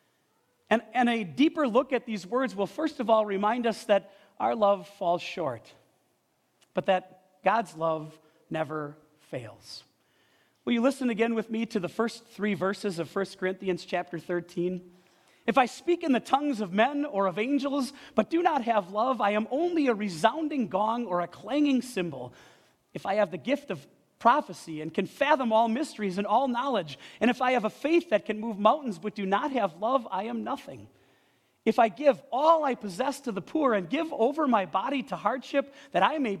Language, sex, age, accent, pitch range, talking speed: English, male, 40-59, American, 180-250 Hz, 195 wpm